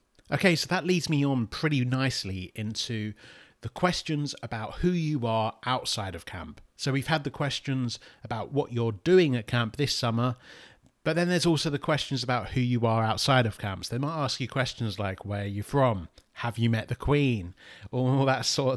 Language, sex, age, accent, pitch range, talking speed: English, male, 30-49, British, 105-135 Hz, 200 wpm